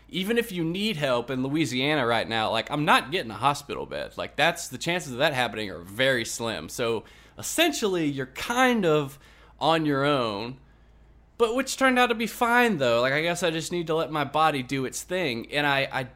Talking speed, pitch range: 215 wpm, 120-155 Hz